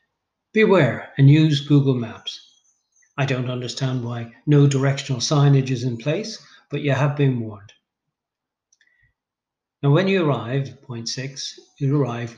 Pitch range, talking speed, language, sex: 120-145 Hz, 135 wpm, English, male